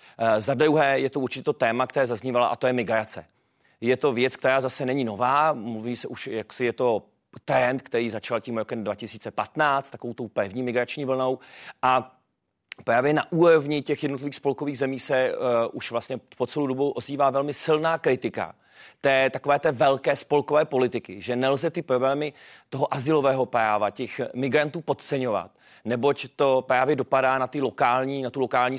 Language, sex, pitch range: Czech, male, 120-140 Hz